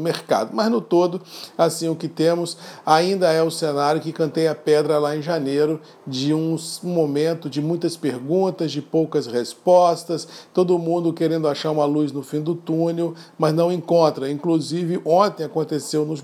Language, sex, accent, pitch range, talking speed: Portuguese, male, Brazilian, 145-170 Hz, 165 wpm